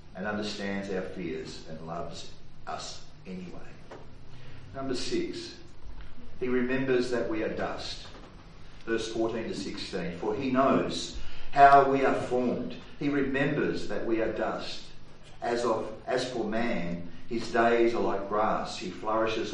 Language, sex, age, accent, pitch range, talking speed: English, male, 40-59, Australian, 95-135 Hz, 140 wpm